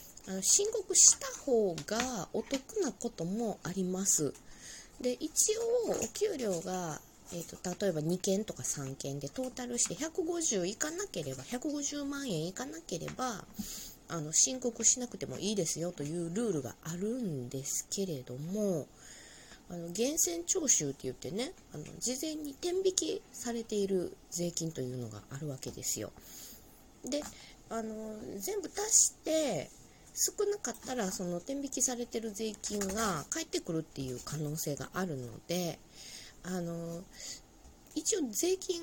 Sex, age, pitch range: female, 20-39, 160-265 Hz